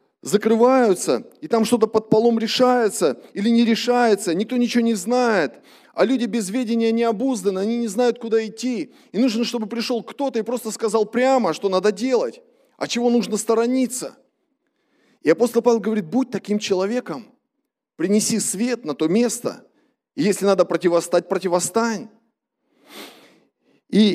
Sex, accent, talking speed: male, native, 145 wpm